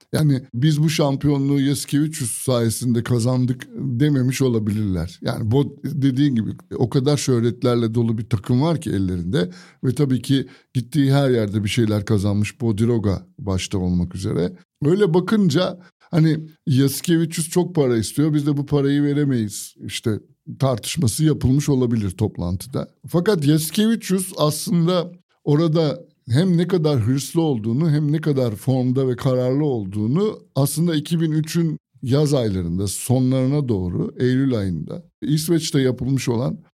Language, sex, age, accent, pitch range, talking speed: Turkish, male, 60-79, native, 120-155 Hz, 135 wpm